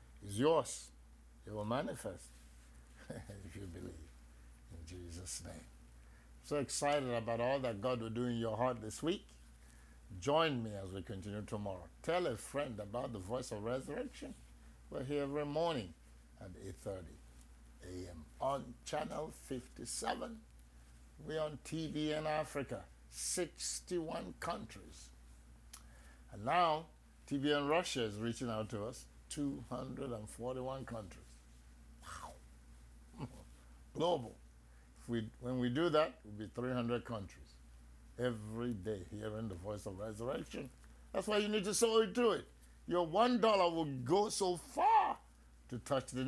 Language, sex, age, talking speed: English, male, 60-79, 145 wpm